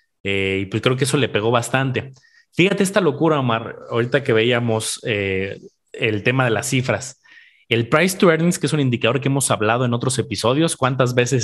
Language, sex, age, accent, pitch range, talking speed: Spanish, male, 30-49, Mexican, 110-145 Hz, 195 wpm